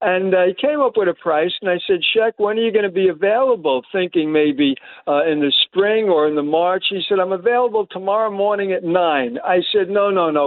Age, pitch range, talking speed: 60-79, 165-230 Hz, 240 wpm